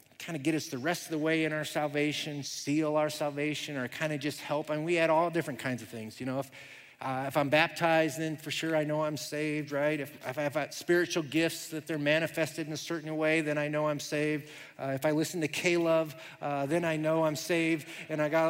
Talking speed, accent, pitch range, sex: 250 wpm, American, 150-190 Hz, male